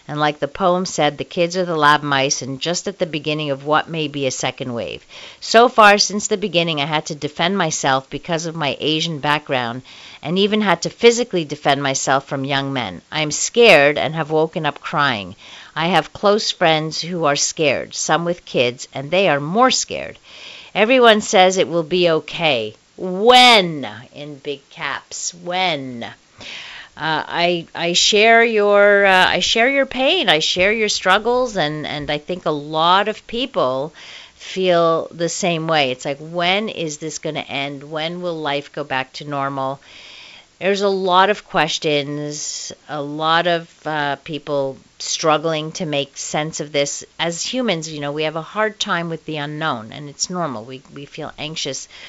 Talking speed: 180 wpm